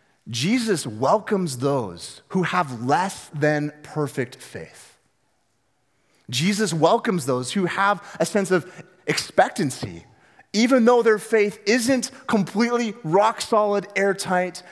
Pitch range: 150-200 Hz